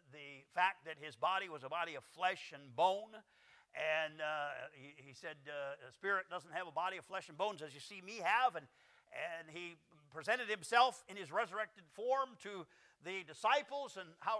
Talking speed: 195 wpm